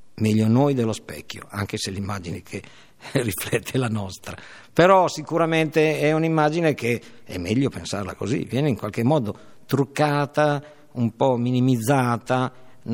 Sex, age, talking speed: male, 50-69, 130 wpm